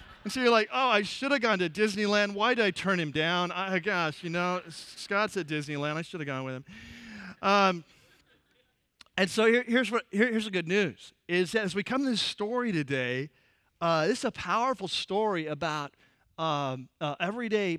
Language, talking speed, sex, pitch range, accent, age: English, 200 wpm, male, 155-215 Hz, American, 40-59